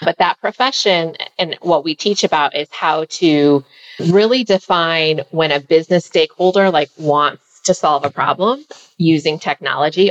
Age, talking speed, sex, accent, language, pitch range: 30-49, 150 wpm, female, American, English, 150-200 Hz